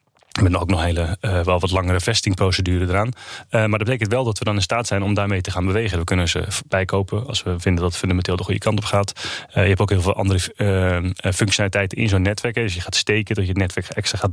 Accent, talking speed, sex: Dutch, 250 wpm, male